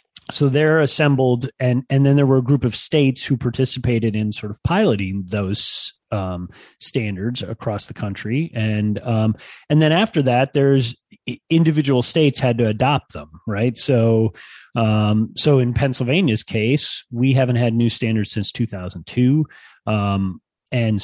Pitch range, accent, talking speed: 110-135 Hz, American, 150 wpm